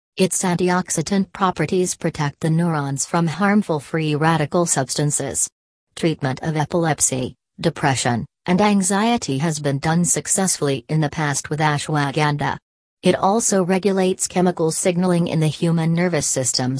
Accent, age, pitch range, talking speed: American, 40-59, 145-180 Hz, 130 wpm